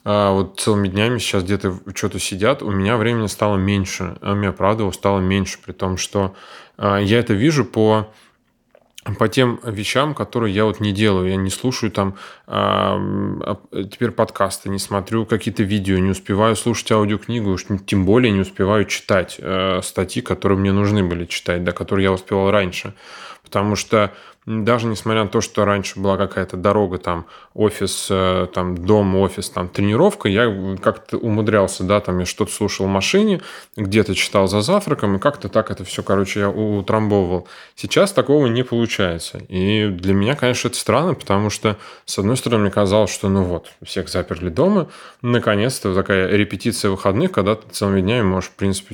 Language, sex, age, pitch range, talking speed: Russian, male, 20-39, 95-110 Hz, 170 wpm